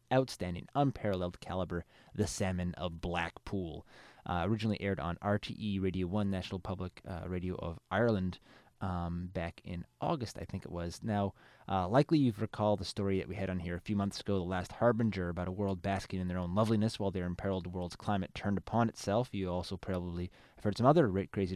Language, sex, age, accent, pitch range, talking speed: English, male, 20-39, American, 90-110 Hz, 200 wpm